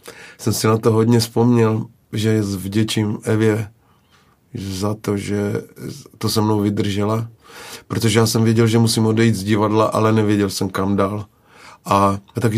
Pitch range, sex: 100-110 Hz, male